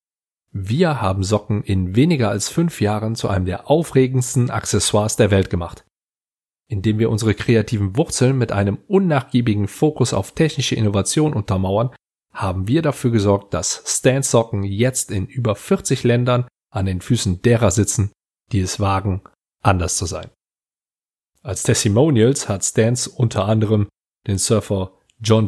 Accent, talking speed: German, 145 wpm